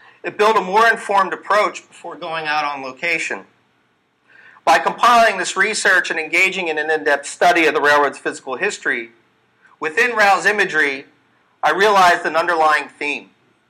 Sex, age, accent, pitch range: male, 40-59, American, 150-205 Hz